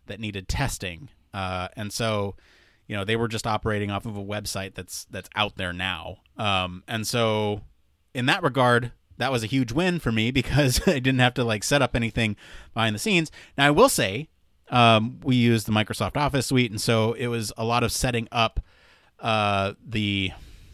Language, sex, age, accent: English, male, 30-49, American